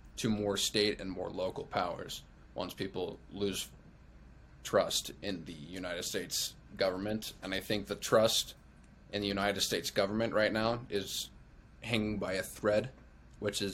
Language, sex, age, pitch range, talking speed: English, male, 20-39, 95-110 Hz, 155 wpm